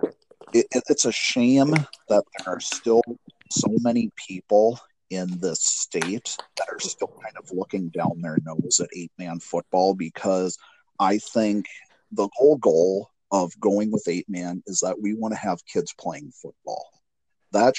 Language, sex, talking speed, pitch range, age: English, male, 160 wpm, 90-115 Hz, 40-59